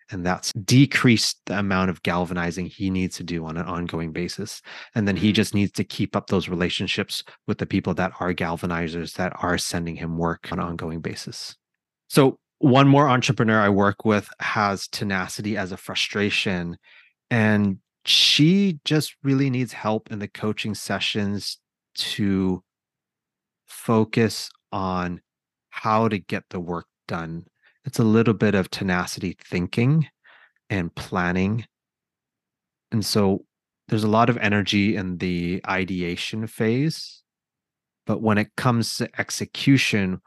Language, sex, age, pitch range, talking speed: English, male, 30-49, 90-110 Hz, 145 wpm